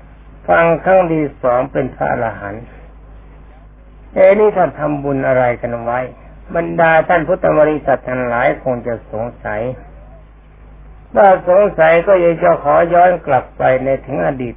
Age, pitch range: 60-79, 125-165 Hz